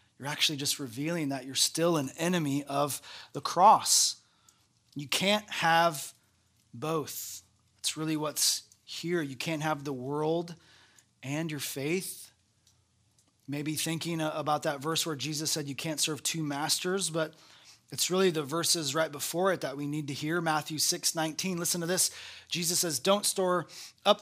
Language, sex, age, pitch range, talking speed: English, male, 30-49, 135-165 Hz, 160 wpm